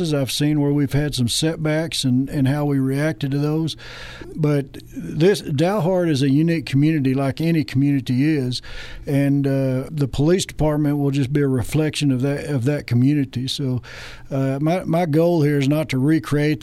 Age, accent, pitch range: 60-79, American, 130-150 Hz